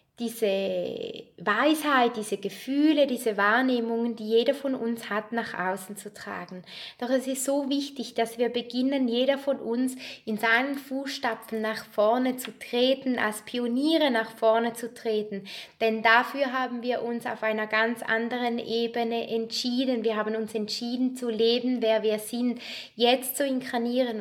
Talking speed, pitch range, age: 155 wpm, 215-255 Hz, 20-39